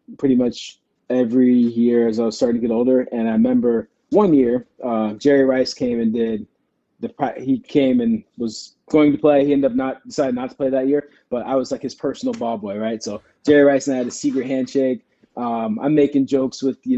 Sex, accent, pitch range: male, American, 125-150 Hz